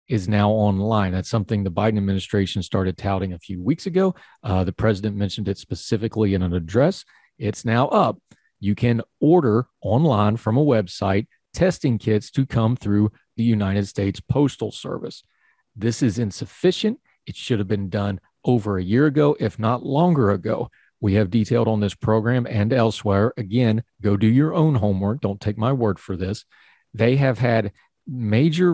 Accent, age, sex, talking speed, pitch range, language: American, 40-59, male, 175 wpm, 105-130 Hz, English